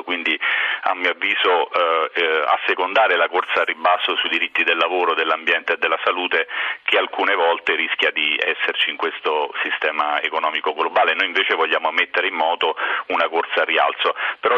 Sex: male